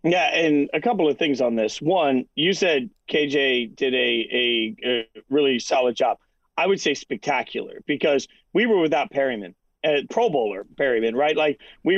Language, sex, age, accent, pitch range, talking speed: English, male, 40-59, American, 135-165 Hz, 175 wpm